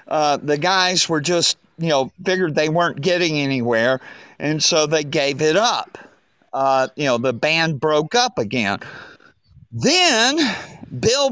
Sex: male